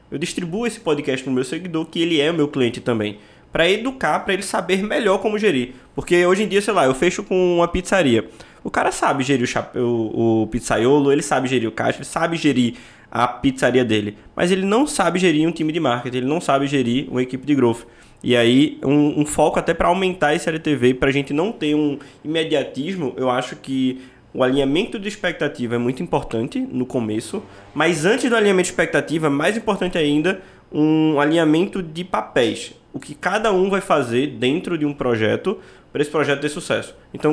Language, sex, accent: Portuguese, male, Brazilian